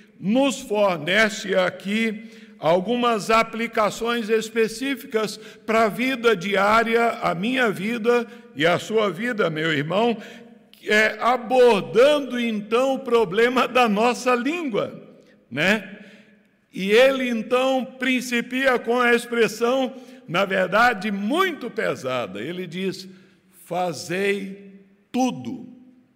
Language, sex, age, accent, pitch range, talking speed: Portuguese, male, 60-79, Brazilian, 200-250 Hz, 100 wpm